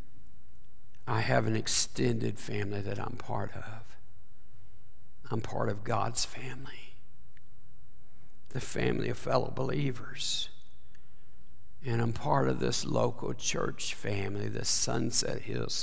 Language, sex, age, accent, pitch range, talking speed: English, male, 60-79, American, 100-120 Hz, 115 wpm